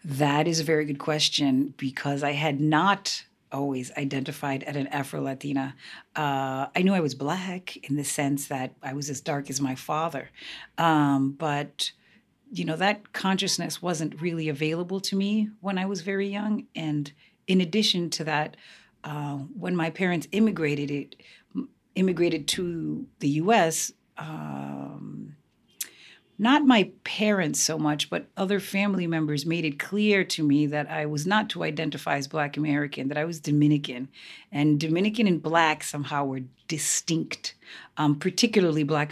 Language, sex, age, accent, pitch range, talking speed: English, female, 40-59, American, 145-180 Hz, 155 wpm